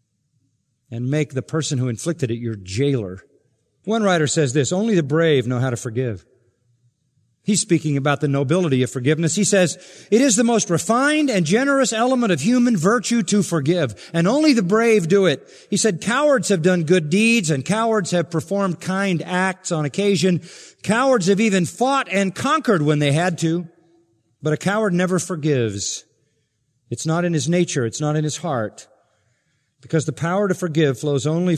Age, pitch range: 50-69, 130-180 Hz